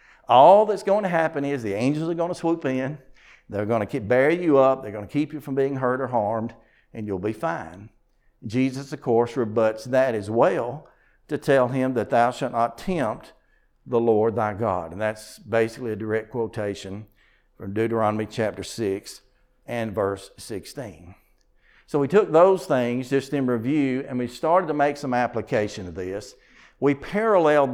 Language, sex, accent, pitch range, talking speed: English, male, American, 115-145 Hz, 185 wpm